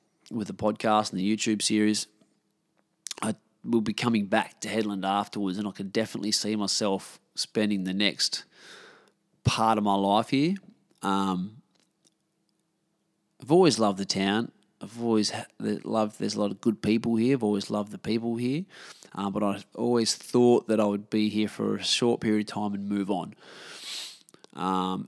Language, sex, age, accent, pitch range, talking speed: English, male, 20-39, Australian, 100-120 Hz, 170 wpm